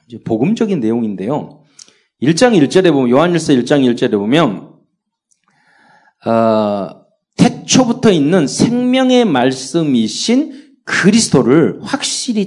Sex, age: male, 40-59